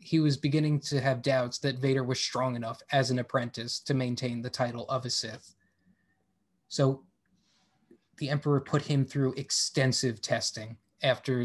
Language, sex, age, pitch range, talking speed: English, male, 20-39, 120-140 Hz, 155 wpm